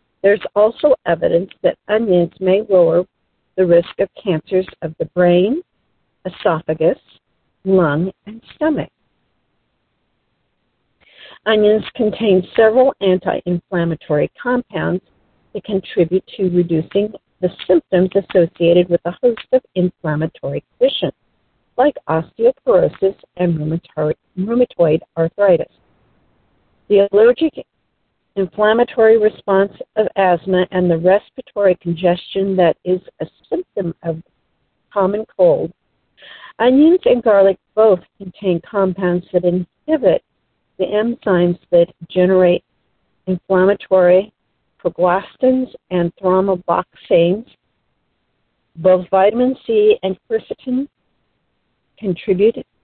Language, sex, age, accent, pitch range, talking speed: English, female, 50-69, American, 175-215 Hz, 90 wpm